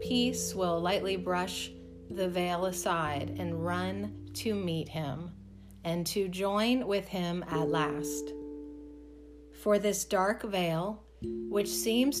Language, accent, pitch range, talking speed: English, American, 145-200 Hz, 125 wpm